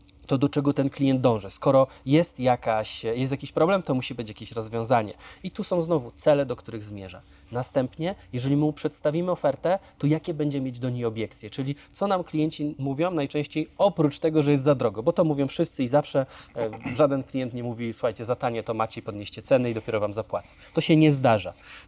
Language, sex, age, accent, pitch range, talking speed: Polish, male, 20-39, native, 115-150 Hz, 205 wpm